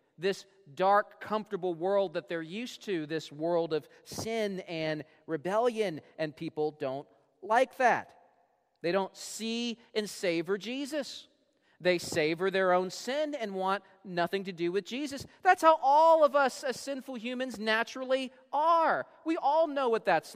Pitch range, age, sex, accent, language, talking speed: 185-285 Hz, 40-59, male, American, English, 155 wpm